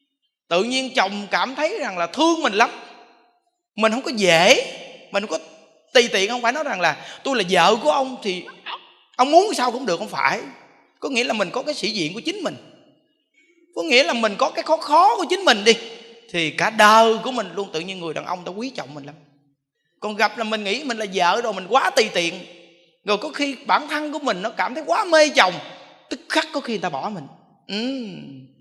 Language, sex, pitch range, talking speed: Vietnamese, male, 185-275 Hz, 235 wpm